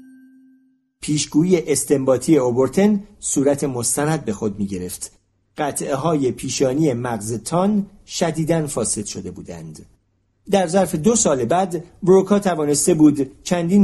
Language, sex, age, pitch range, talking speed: Persian, male, 50-69, 115-180 Hz, 115 wpm